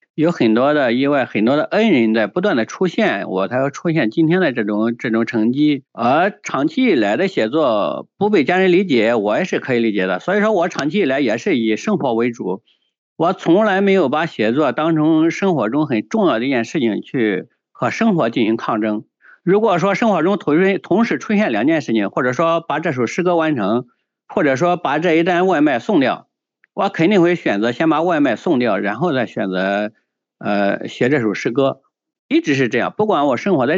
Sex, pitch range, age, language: male, 115-185 Hz, 50-69, Chinese